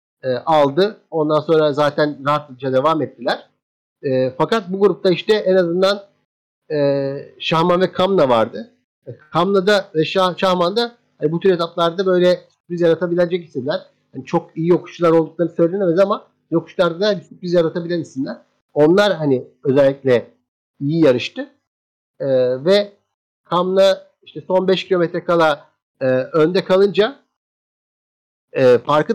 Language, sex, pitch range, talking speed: Turkish, male, 150-195 Hz, 130 wpm